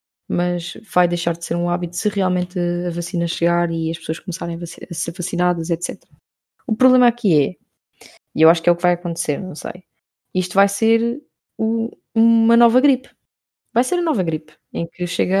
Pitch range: 170-210 Hz